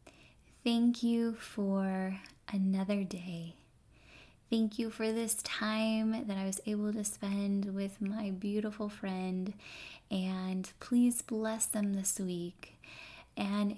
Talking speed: 120 wpm